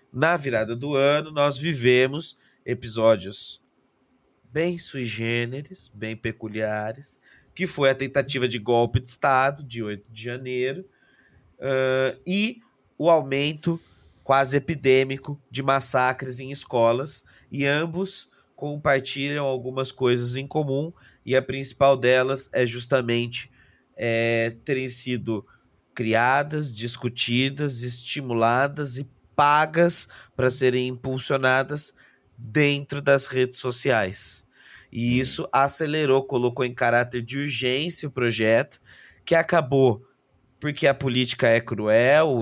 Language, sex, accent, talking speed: Portuguese, male, Brazilian, 110 wpm